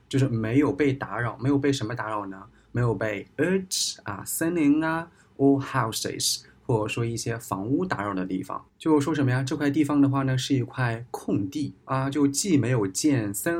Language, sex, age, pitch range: Chinese, male, 20-39, 110-140 Hz